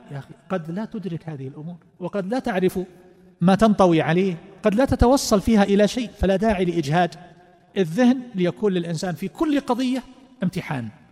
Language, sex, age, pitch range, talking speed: Arabic, male, 40-59, 155-195 Hz, 155 wpm